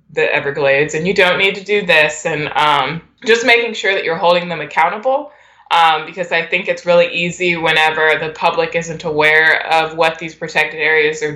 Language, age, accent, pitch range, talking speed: English, 20-39, American, 155-195 Hz, 195 wpm